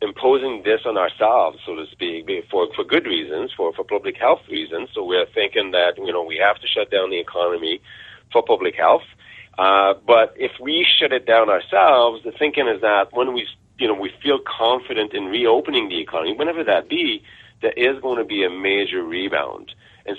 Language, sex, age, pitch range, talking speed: English, male, 30-49, 315-440 Hz, 200 wpm